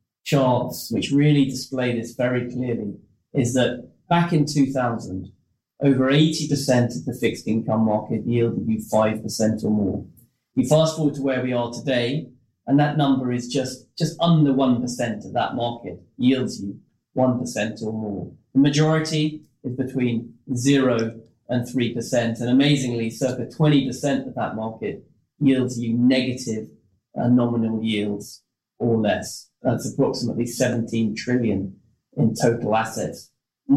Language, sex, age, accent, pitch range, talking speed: English, male, 30-49, British, 115-135 Hz, 140 wpm